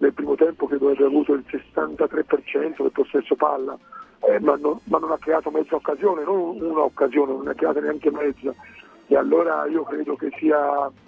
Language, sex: Italian, male